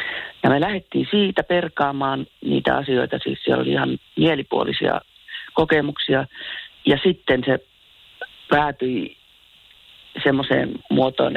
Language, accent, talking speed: Finnish, native, 100 wpm